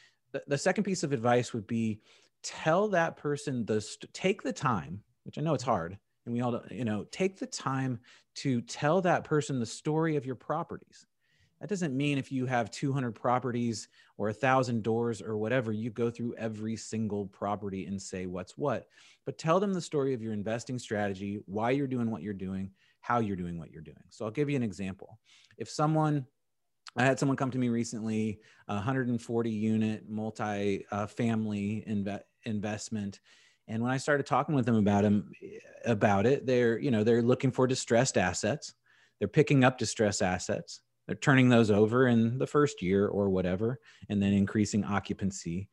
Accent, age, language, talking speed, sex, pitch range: American, 30-49, English, 180 wpm, male, 105-135 Hz